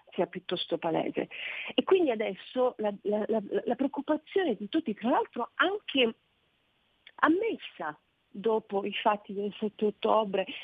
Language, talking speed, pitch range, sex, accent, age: Italian, 130 wpm, 195-230 Hz, female, native, 40-59